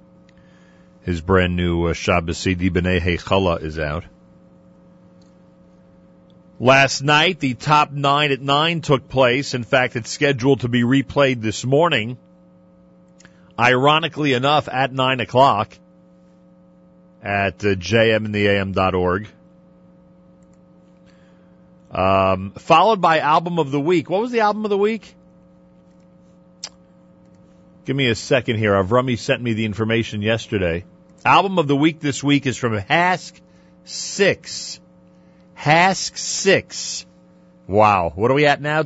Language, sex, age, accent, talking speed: English, male, 40-59, American, 115 wpm